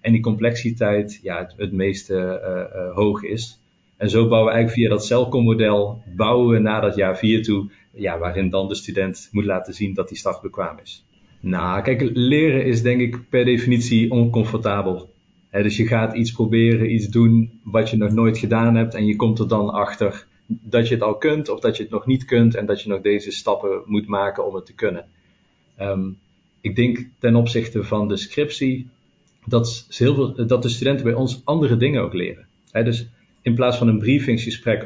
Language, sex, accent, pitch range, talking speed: Dutch, male, Dutch, 105-125 Hz, 200 wpm